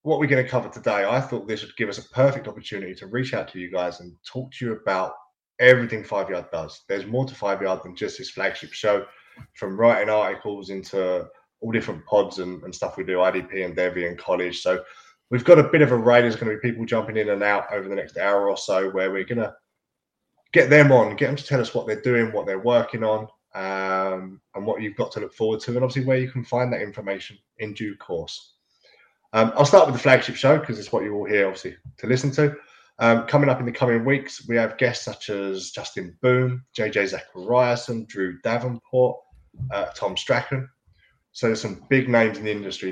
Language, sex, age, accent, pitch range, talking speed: English, male, 20-39, British, 95-125 Hz, 230 wpm